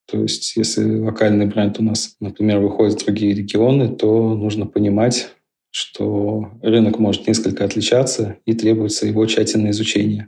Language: Russian